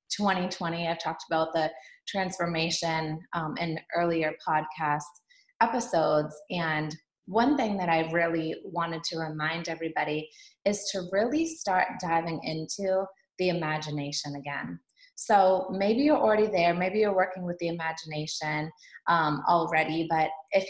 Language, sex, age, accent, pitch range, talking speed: English, female, 20-39, American, 155-185 Hz, 130 wpm